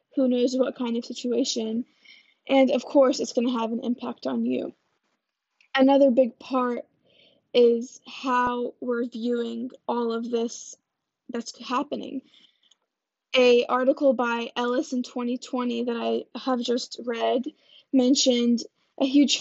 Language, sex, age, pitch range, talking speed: English, female, 10-29, 240-265 Hz, 135 wpm